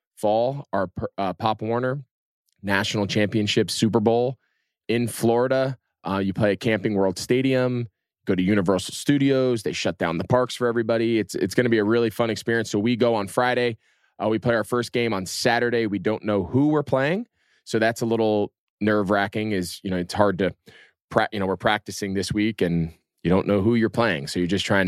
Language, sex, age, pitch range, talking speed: English, male, 20-39, 100-120 Hz, 210 wpm